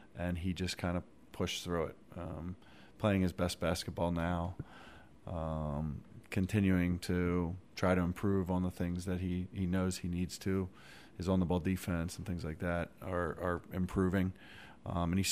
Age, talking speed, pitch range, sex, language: 40-59, 170 wpm, 85-100 Hz, male, English